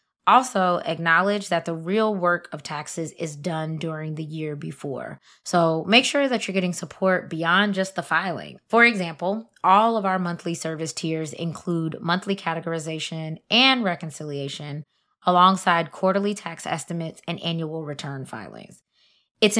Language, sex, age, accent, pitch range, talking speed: English, female, 20-39, American, 165-200 Hz, 145 wpm